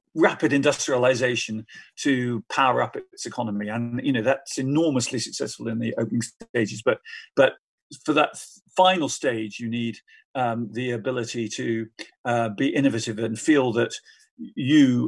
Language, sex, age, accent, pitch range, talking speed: English, male, 50-69, British, 115-140 Hz, 145 wpm